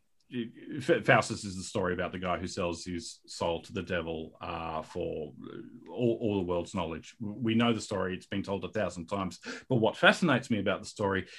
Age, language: 40-59, English